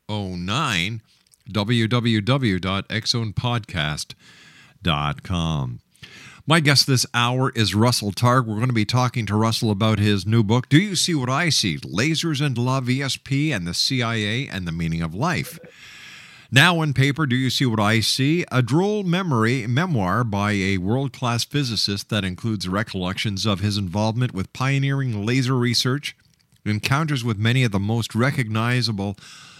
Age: 50-69